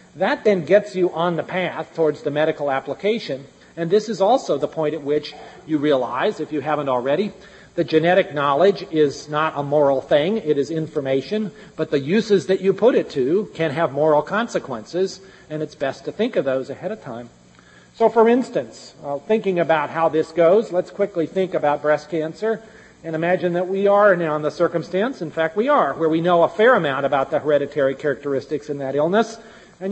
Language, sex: English, male